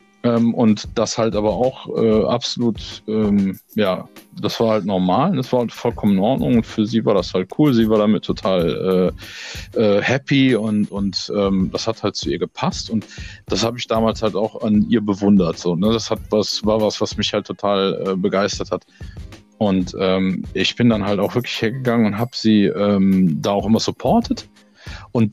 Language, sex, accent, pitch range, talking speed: German, male, German, 100-120 Hz, 185 wpm